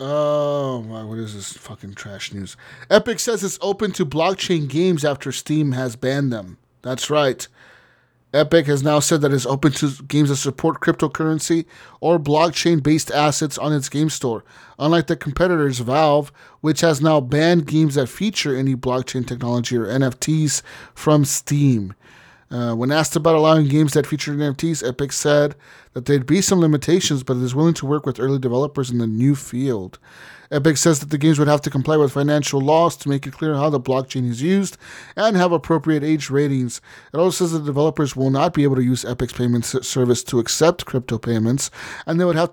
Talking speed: 190 wpm